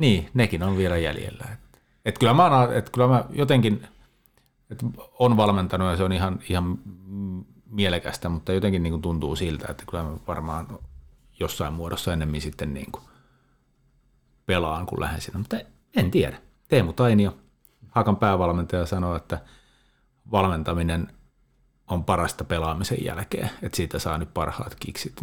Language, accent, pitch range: Finnish, native, 80-105 Hz